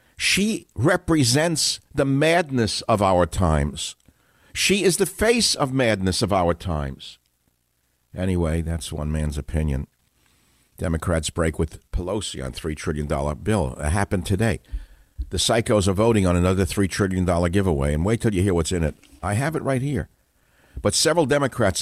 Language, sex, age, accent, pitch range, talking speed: English, male, 60-79, American, 80-100 Hz, 155 wpm